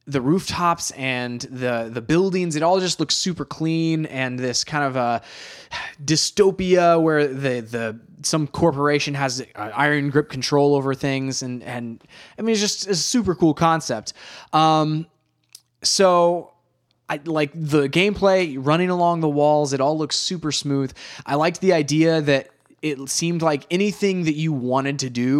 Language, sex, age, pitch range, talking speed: English, male, 20-39, 135-170 Hz, 160 wpm